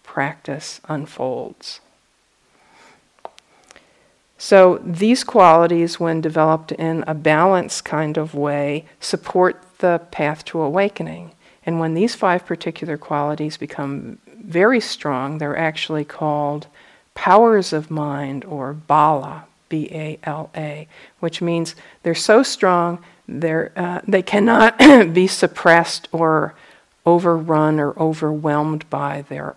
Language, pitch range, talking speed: English, 155-180 Hz, 110 wpm